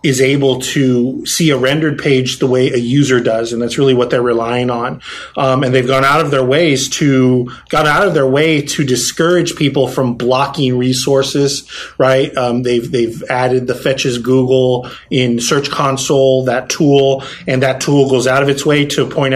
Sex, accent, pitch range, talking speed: male, American, 125-145 Hz, 190 wpm